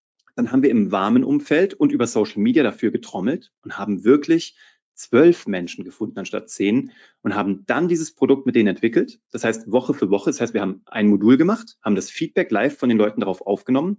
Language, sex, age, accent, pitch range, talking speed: German, male, 30-49, German, 115-190 Hz, 210 wpm